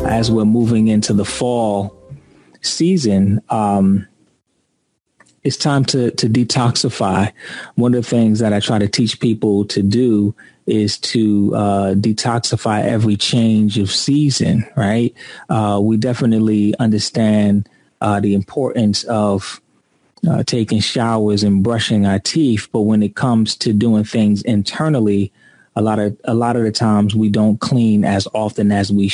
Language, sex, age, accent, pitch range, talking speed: English, male, 30-49, American, 105-115 Hz, 150 wpm